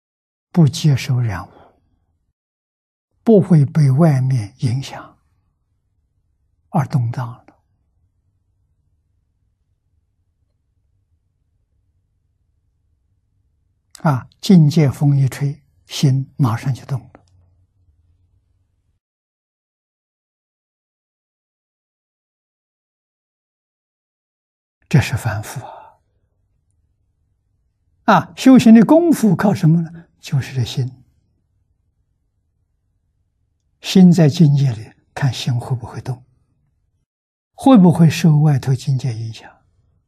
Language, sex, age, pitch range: Chinese, male, 60-79, 90-135 Hz